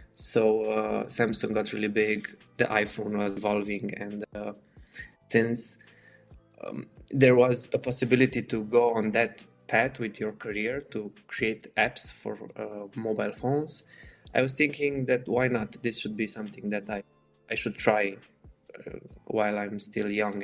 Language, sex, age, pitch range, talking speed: English, male, 20-39, 105-125 Hz, 155 wpm